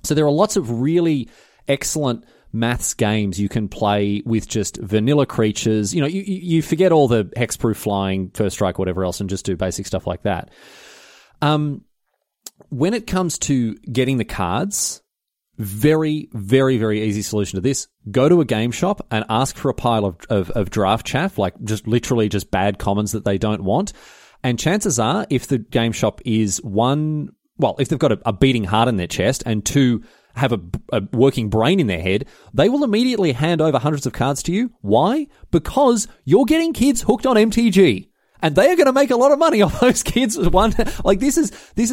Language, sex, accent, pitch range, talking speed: English, male, Australian, 110-175 Hz, 205 wpm